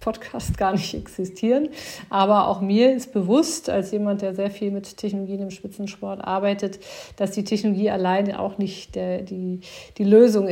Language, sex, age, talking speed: German, female, 40-59, 165 wpm